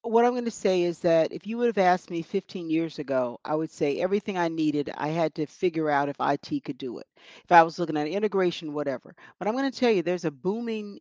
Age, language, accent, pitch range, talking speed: 50-69, English, American, 165-200 Hz, 260 wpm